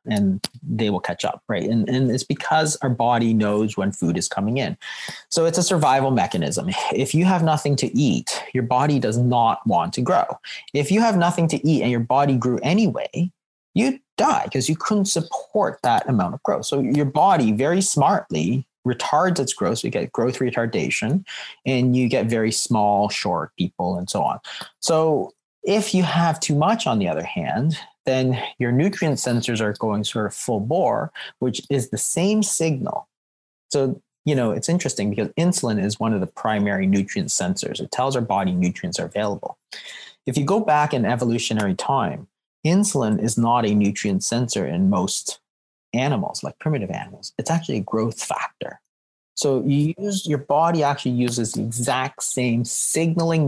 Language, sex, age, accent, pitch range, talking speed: English, male, 30-49, American, 115-160 Hz, 180 wpm